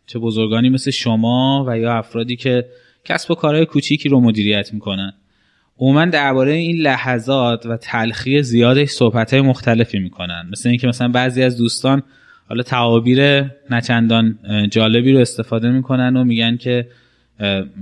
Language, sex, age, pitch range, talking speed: Persian, male, 10-29, 115-140 Hz, 140 wpm